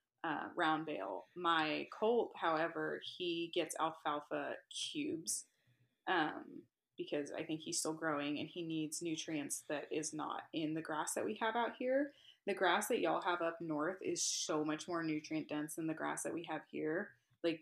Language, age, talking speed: English, 20-39, 180 wpm